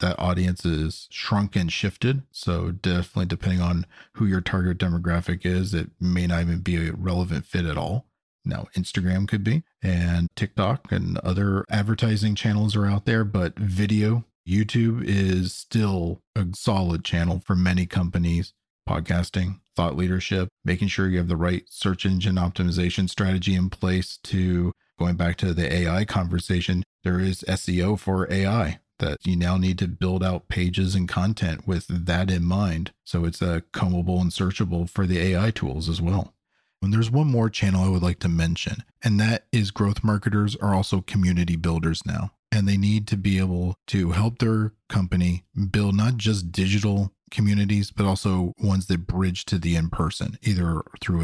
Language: English